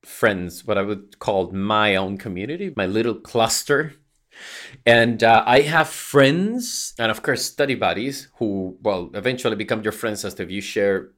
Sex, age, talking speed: male, 30-49, 170 wpm